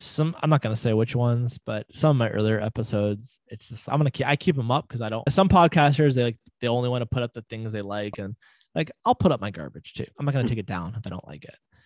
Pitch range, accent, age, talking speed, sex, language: 105-130 Hz, American, 20-39, 305 wpm, male, English